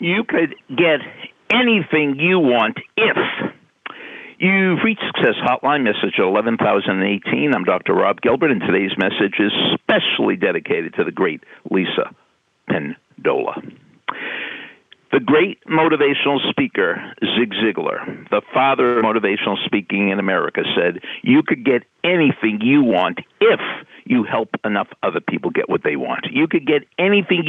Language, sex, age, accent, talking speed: English, male, 50-69, American, 140 wpm